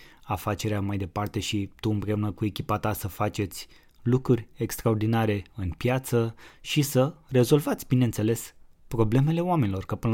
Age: 20-39